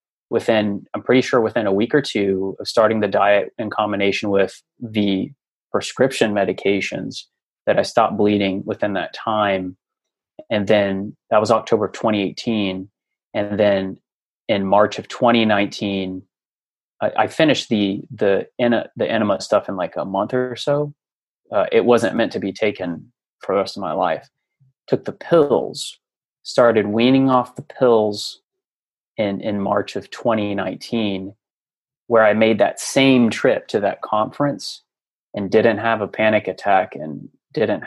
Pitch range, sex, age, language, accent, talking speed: 100-115 Hz, male, 30-49, English, American, 150 wpm